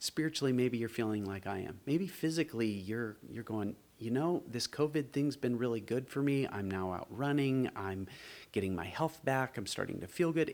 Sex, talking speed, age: male, 205 wpm, 30-49